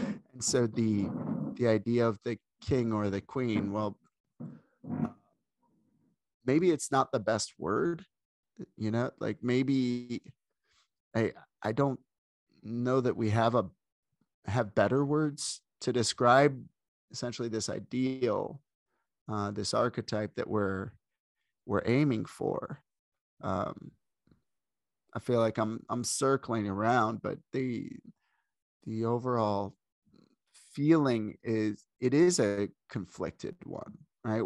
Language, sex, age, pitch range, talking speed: English, male, 30-49, 105-125 Hz, 115 wpm